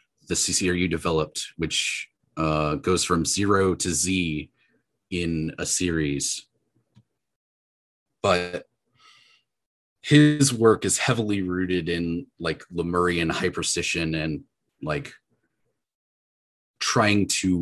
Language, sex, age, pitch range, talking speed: English, male, 30-49, 85-110 Hz, 90 wpm